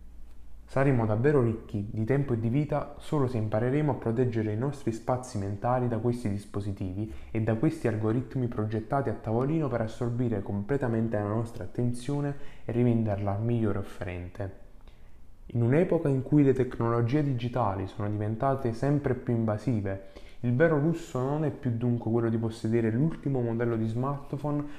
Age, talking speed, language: 20-39, 155 wpm, Italian